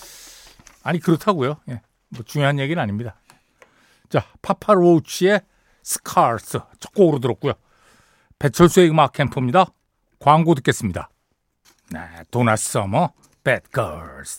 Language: Korean